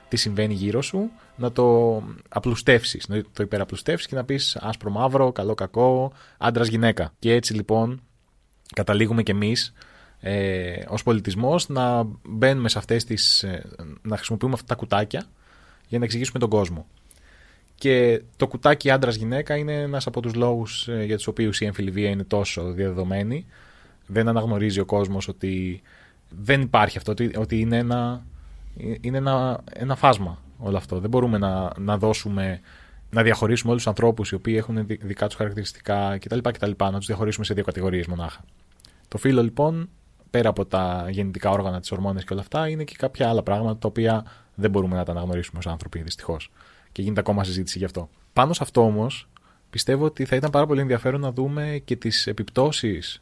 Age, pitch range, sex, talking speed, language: 20-39, 100-120 Hz, male, 175 wpm, Greek